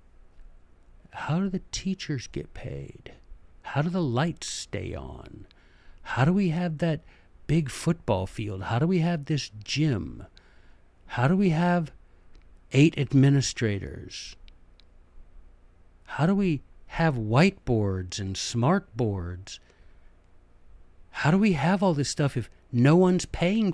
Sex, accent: male, American